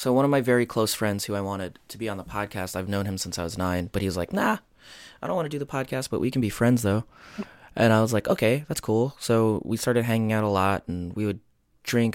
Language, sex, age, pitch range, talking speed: English, male, 20-39, 90-115 Hz, 285 wpm